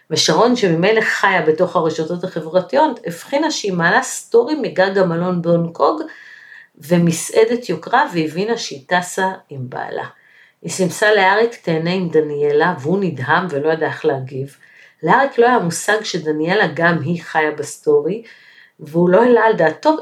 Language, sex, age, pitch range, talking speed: Hebrew, female, 50-69, 155-220 Hz, 140 wpm